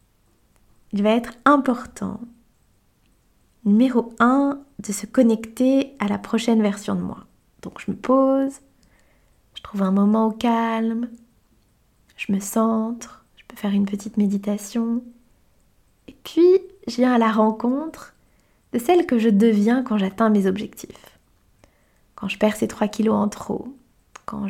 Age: 20-39